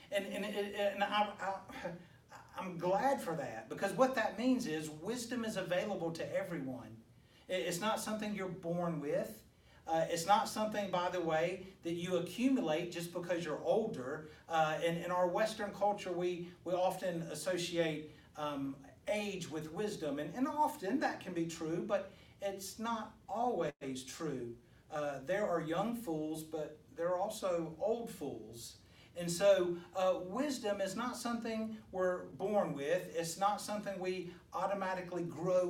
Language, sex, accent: English, male, American